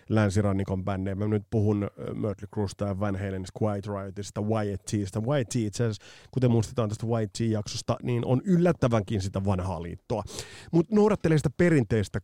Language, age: Finnish, 30-49